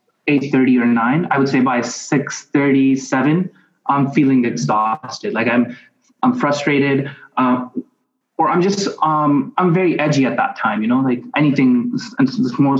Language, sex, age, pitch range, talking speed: English, male, 20-39, 135-175 Hz, 150 wpm